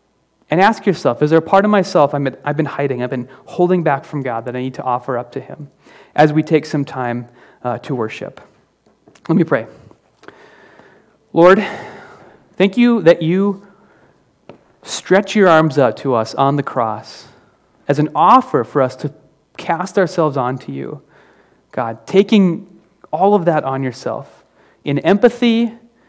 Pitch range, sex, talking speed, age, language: 130-180 Hz, male, 160 wpm, 30-49, English